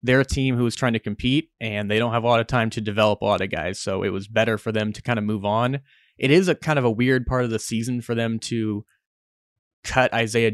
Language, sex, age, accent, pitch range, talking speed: English, male, 20-39, American, 110-125 Hz, 280 wpm